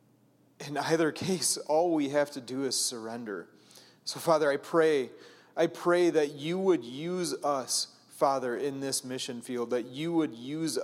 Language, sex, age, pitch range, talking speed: English, male, 30-49, 120-145 Hz, 165 wpm